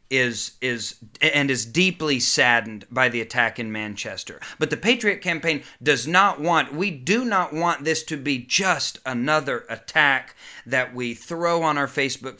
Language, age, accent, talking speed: English, 40-59, American, 165 wpm